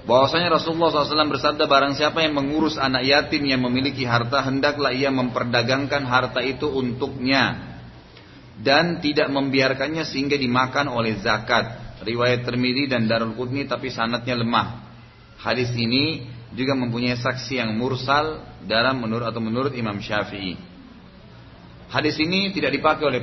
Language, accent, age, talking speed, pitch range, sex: Indonesian, native, 30-49, 135 wpm, 120-145 Hz, male